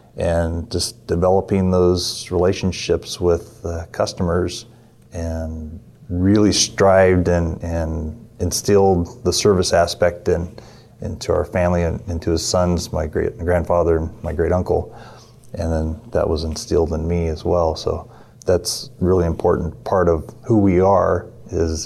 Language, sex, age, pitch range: English, male, 30-49, 85-95 Hz